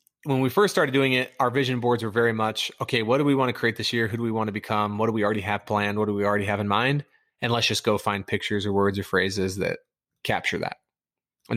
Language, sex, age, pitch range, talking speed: English, male, 20-39, 105-120 Hz, 280 wpm